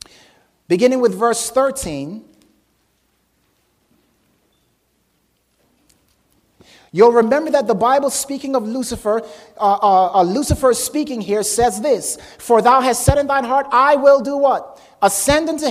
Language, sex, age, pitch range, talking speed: English, male, 30-49, 235-300 Hz, 125 wpm